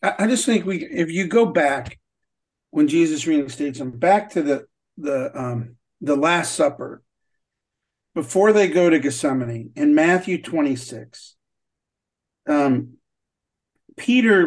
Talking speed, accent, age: 130 wpm, American, 50-69